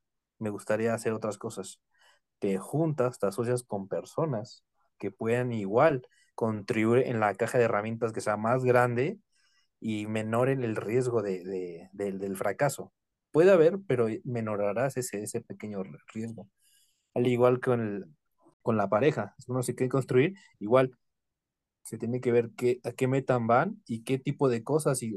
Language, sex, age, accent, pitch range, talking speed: Spanish, male, 30-49, Mexican, 110-135 Hz, 160 wpm